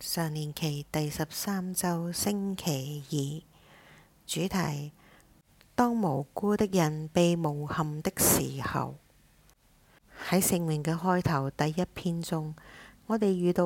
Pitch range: 140-175 Hz